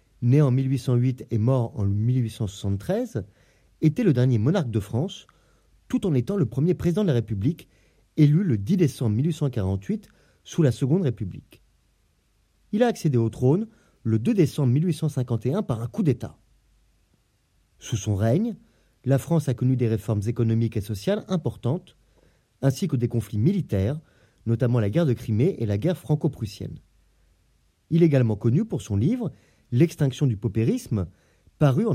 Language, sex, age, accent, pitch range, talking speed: French, male, 30-49, French, 110-160 Hz, 155 wpm